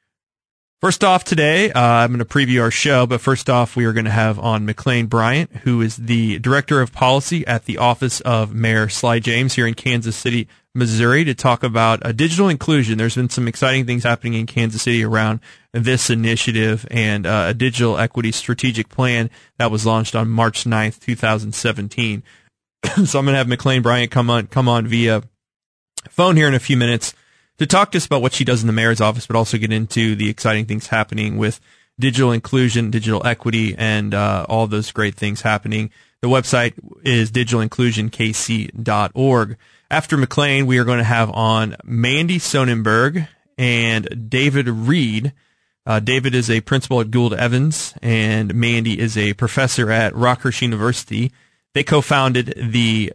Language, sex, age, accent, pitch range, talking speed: English, male, 20-39, American, 110-130 Hz, 175 wpm